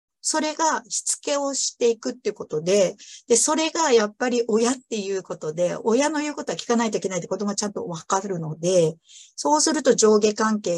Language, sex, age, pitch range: Japanese, female, 50-69, 165-245 Hz